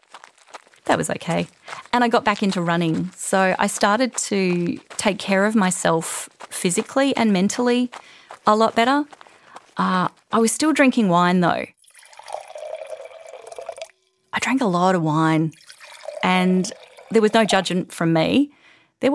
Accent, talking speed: Australian, 140 wpm